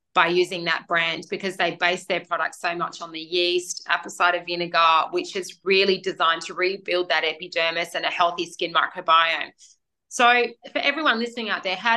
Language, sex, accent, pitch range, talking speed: English, female, Australian, 175-210 Hz, 185 wpm